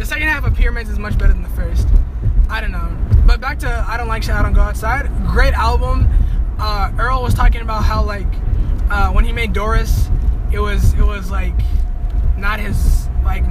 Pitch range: 65-75 Hz